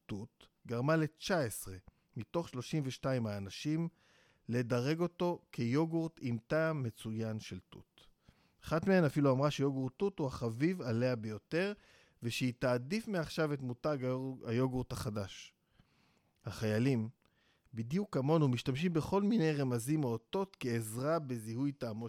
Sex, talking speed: male, 115 wpm